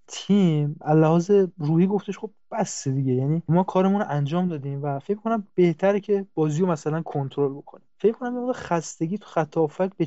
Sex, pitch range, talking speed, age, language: male, 145-185 Hz, 175 wpm, 20-39, English